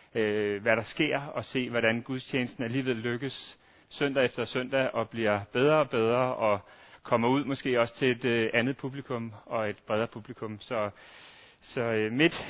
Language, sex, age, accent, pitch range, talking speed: Danish, male, 30-49, native, 115-135 Hz, 160 wpm